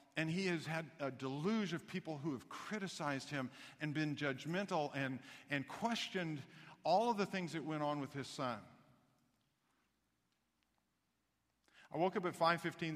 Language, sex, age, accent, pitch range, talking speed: English, male, 50-69, American, 125-160 Hz, 155 wpm